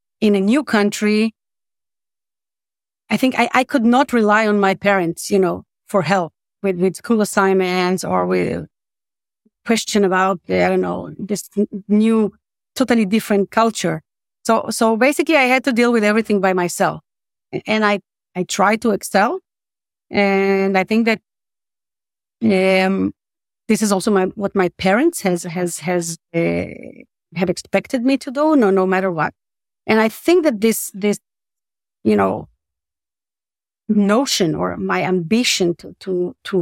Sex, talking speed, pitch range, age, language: female, 150 wpm, 185-225 Hz, 30-49, English